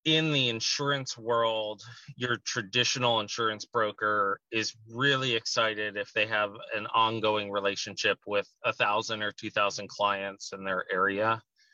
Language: English